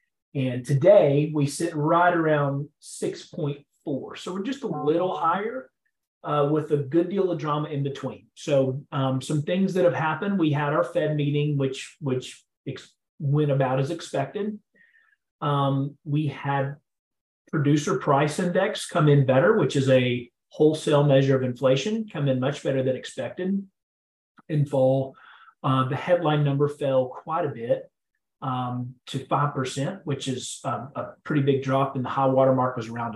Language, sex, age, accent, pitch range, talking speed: English, male, 30-49, American, 130-150 Hz, 160 wpm